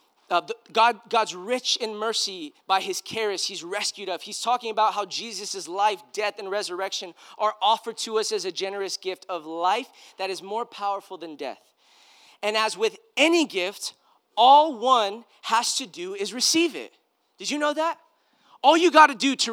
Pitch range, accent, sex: 200-285 Hz, American, male